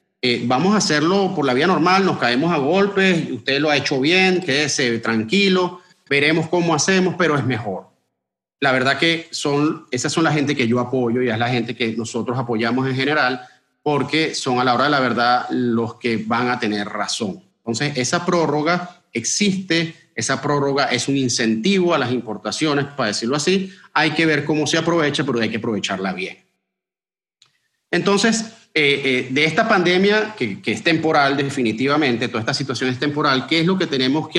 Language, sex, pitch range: English, male, 125-165 Hz